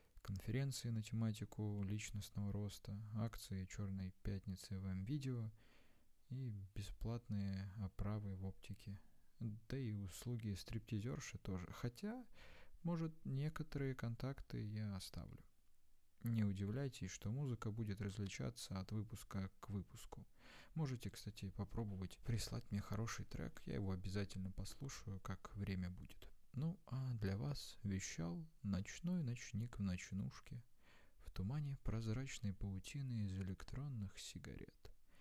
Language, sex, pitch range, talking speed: English, male, 100-125 Hz, 110 wpm